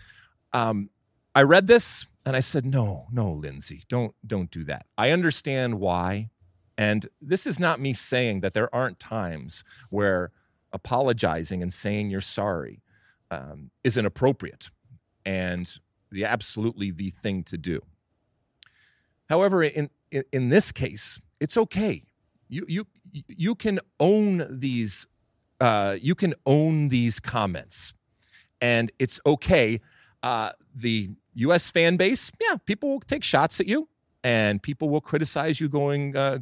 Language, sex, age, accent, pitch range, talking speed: English, male, 40-59, American, 105-155 Hz, 140 wpm